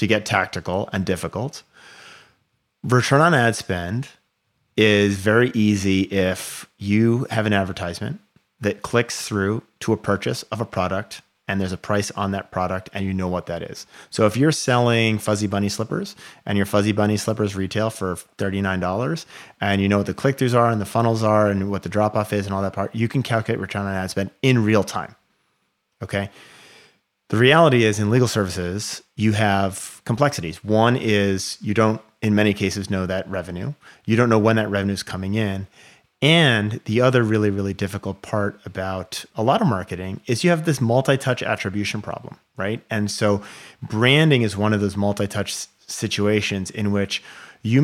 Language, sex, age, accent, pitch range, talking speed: English, male, 30-49, American, 100-115 Hz, 180 wpm